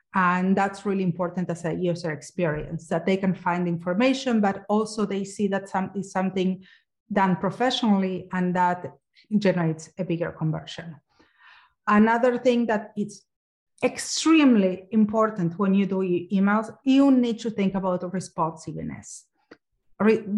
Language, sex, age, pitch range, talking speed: English, female, 30-49, 185-225 Hz, 145 wpm